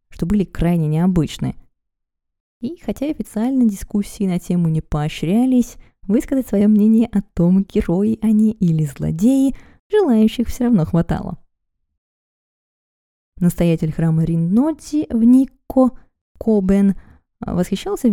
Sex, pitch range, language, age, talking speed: female, 165-225 Hz, Russian, 20-39, 105 wpm